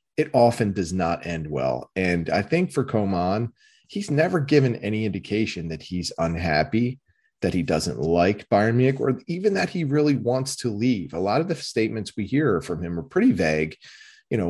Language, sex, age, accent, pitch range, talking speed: English, male, 30-49, American, 90-130 Hz, 195 wpm